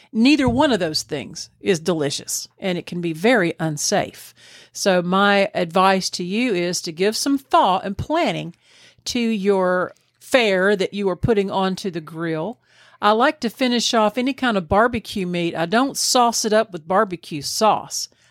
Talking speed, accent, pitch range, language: 175 wpm, American, 175-220 Hz, English